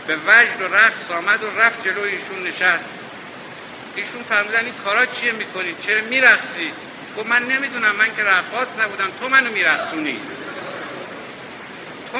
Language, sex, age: Persian, male, 60-79